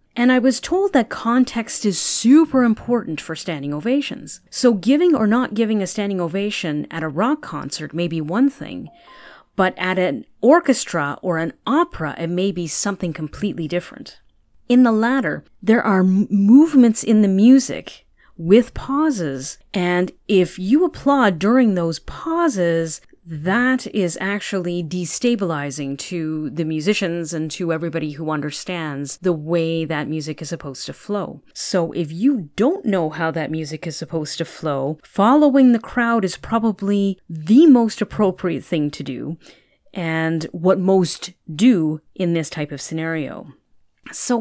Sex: female